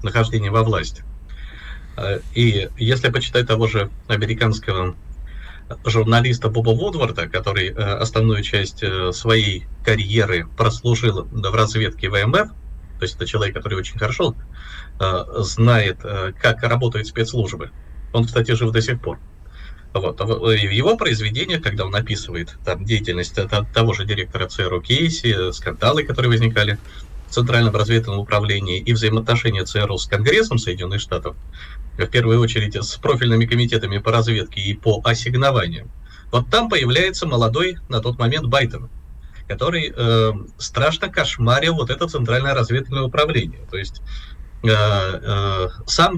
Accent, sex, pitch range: native, male, 95-120 Hz